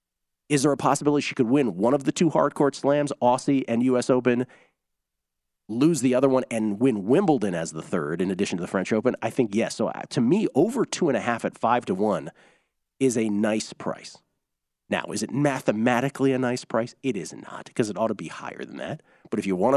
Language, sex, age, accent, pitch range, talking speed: English, male, 40-59, American, 105-140 Hz, 225 wpm